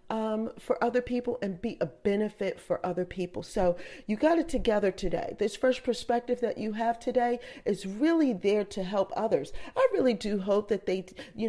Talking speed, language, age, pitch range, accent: 195 wpm, English, 40-59, 175-230 Hz, American